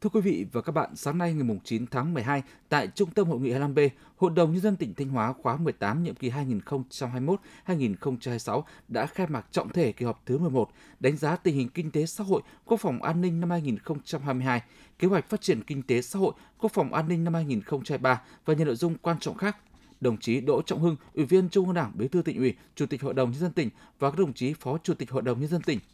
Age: 20-39